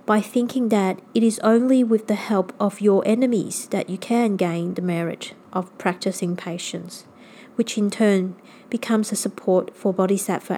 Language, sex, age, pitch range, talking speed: English, female, 30-49, 180-235 Hz, 165 wpm